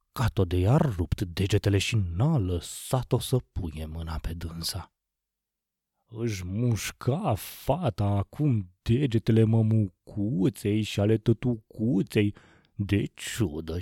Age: 30-49